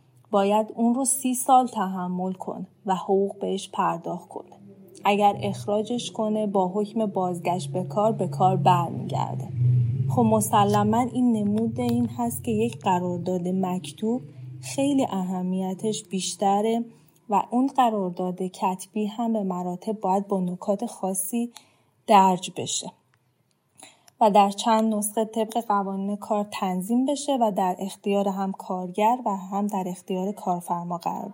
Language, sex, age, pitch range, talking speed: Persian, female, 20-39, 190-225 Hz, 130 wpm